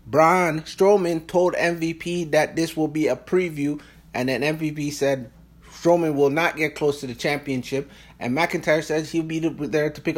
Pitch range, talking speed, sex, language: 130-165 Hz, 175 wpm, male, English